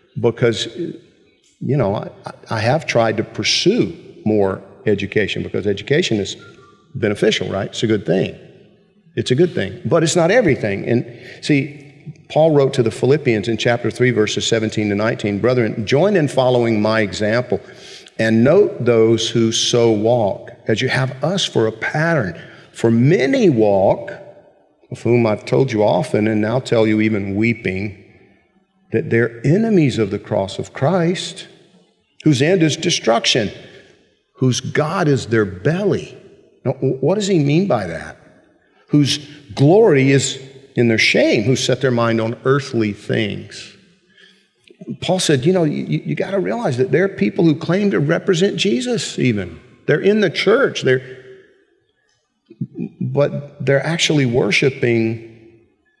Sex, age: male, 50-69